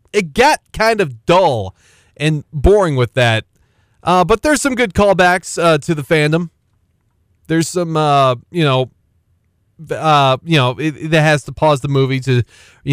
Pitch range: 110-155 Hz